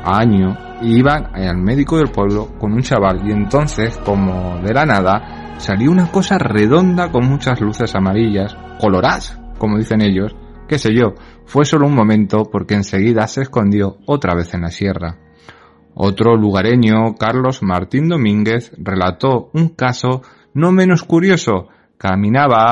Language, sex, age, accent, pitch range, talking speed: Spanish, male, 30-49, Spanish, 100-130 Hz, 145 wpm